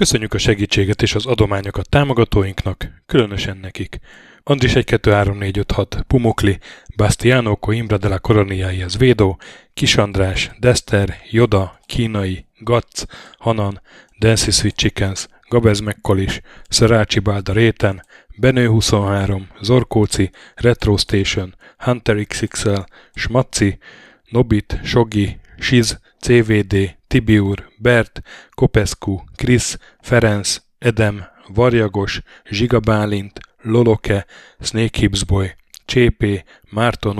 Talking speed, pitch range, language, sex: 85 wpm, 100-120 Hz, Hungarian, male